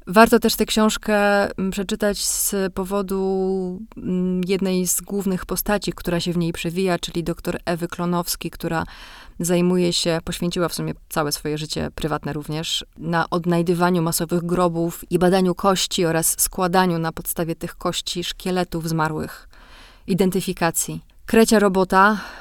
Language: Polish